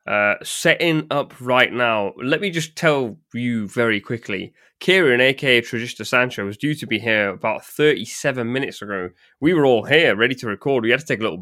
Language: English